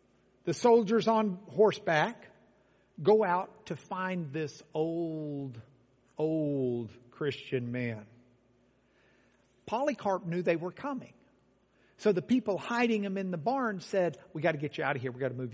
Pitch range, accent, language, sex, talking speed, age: 125-205 Hz, American, English, male, 150 wpm, 50-69